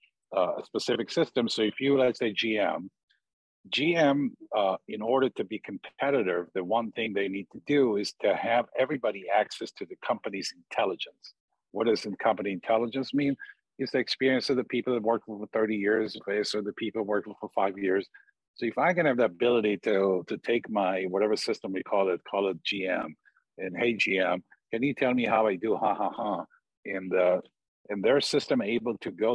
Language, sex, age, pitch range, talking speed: English, male, 50-69, 100-125 Hz, 200 wpm